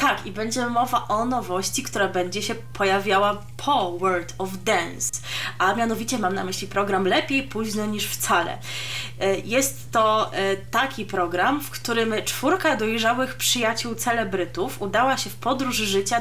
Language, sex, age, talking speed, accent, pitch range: Polish, female, 20-39, 145 wpm, native, 190-255 Hz